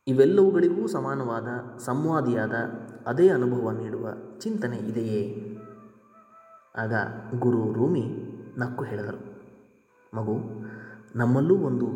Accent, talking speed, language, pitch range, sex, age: native, 80 wpm, Kannada, 120-145 Hz, male, 20-39